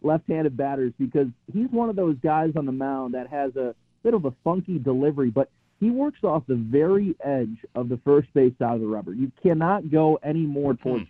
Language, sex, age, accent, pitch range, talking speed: English, male, 40-59, American, 125-155 Hz, 215 wpm